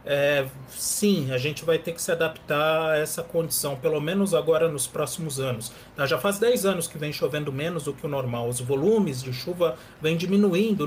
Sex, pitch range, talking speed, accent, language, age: male, 135-190 Hz, 195 wpm, Brazilian, Portuguese, 40-59